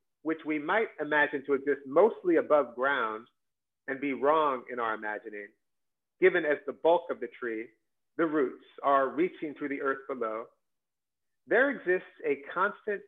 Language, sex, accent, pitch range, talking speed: English, male, American, 135-190 Hz, 155 wpm